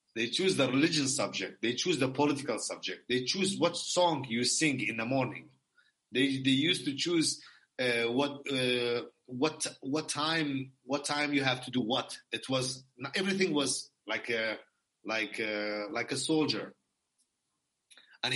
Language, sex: English, male